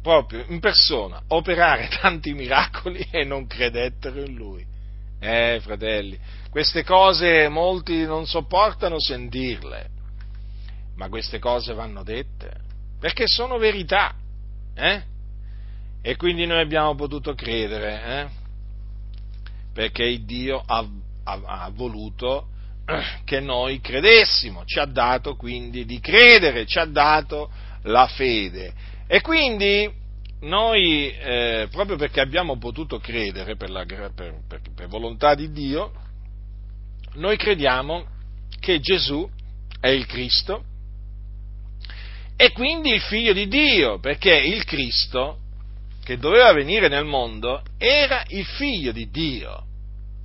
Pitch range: 100-160 Hz